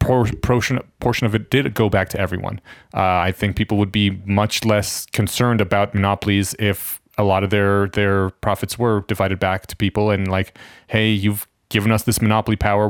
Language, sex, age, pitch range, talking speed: English, male, 30-49, 105-130 Hz, 190 wpm